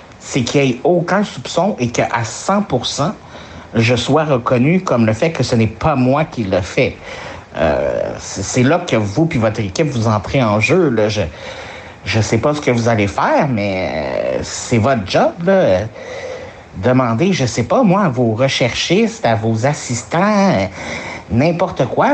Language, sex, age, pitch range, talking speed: French, male, 60-79, 115-170 Hz, 175 wpm